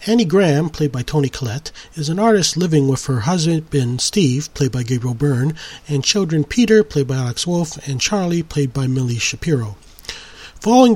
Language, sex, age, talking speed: English, male, 40-59, 175 wpm